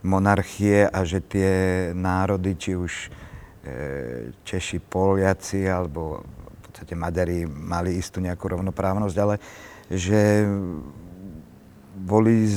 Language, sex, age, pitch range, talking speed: Slovak, male, 50-69, 90-105 Hz, 95 wpm